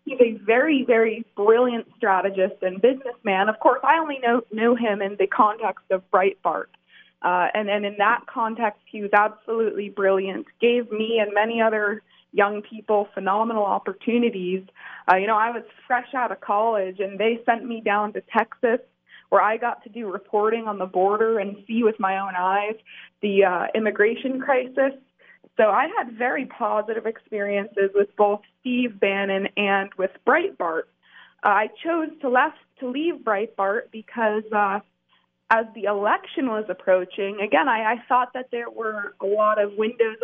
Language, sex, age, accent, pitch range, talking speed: English, female, 20-39, American, 200-235 Hz, 170 wpm